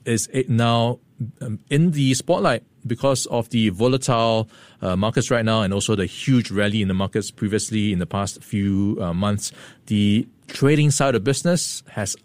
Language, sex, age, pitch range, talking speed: English, male, 20-39, 100-130 Hz, 160 wpm